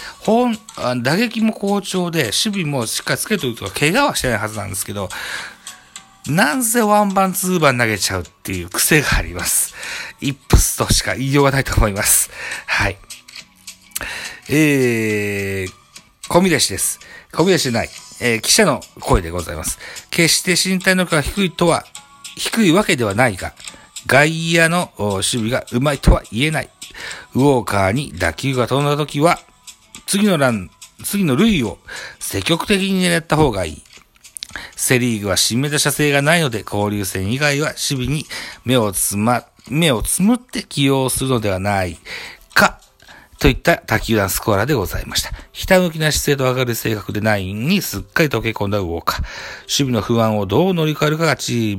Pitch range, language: 105-165 Hz, Japanese